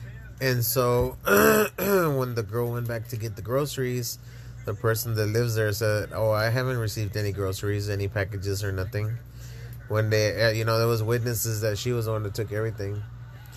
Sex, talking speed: male, 185 wpm